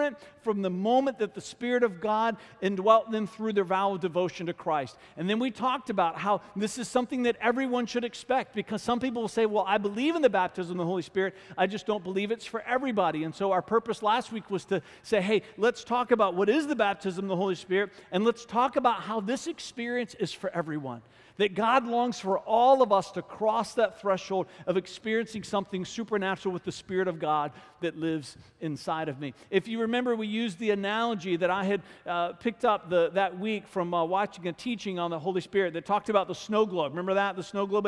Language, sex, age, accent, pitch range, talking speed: English, male, 50-69, American, 185-225 Hz, 230 wpm